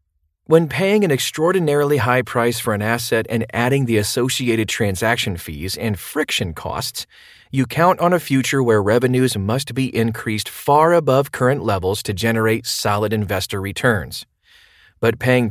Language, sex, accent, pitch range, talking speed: English, male, American, 105-135 Hz, 150 wpm